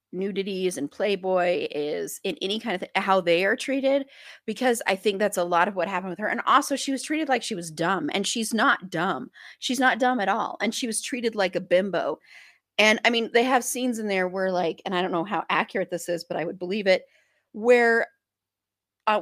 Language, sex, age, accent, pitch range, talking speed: English, female, 30-49, American, 195-255 Hz, 230 wpm